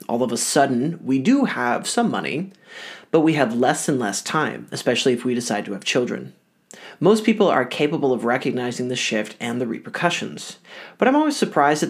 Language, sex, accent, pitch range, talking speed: English, male, American, 125-185 Hz, 195 wpm